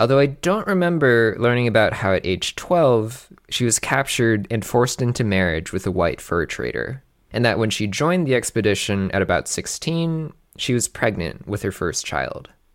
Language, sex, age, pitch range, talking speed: English, male, 20-39, 100-160 Hz, 185 wpm